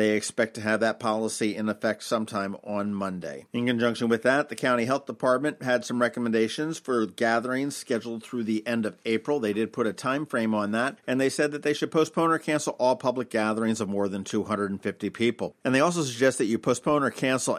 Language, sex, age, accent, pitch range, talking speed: English, male, 50-69, American, 110-135 Hz, 220 wpm